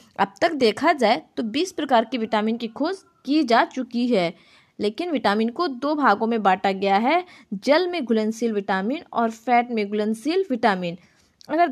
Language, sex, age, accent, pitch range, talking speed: Hindi, female, 20-39, native, 210-310 Hz, 175 wpm